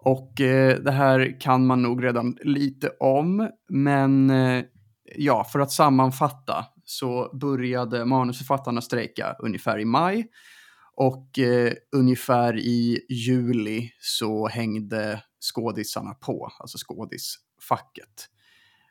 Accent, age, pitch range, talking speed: Norwegian, 30-49, 115-135 Hz, 95 wpm